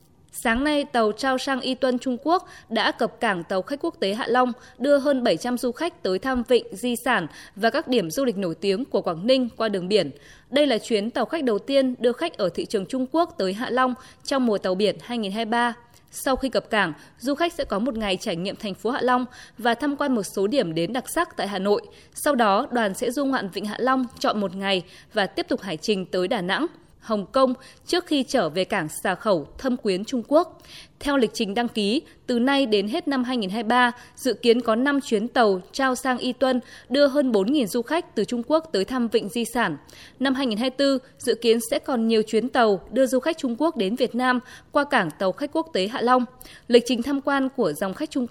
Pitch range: 210-270 Hz